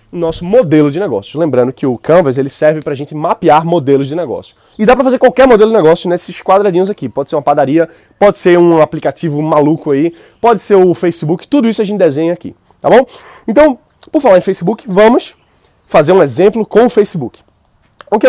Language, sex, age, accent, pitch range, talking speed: Portuguese, male, 20-39, Brazilian, 150-205 Hz, 210 wpm